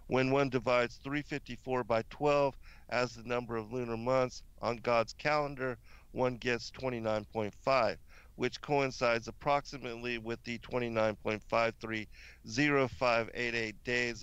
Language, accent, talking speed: English, American, 105 wpm